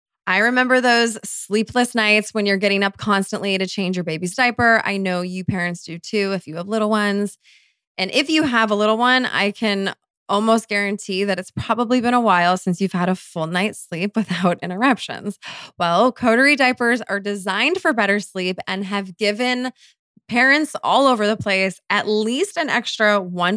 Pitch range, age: 185-230 Hz, 20-39